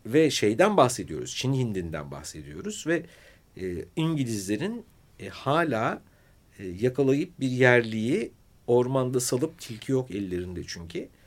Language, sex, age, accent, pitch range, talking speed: Turkish, male, 60-79, native, 95-130 Hz, 110 wpm